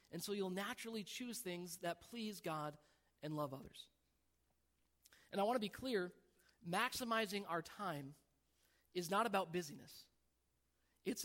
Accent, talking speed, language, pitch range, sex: American, 140 wpm, English, 150-215 Hz, male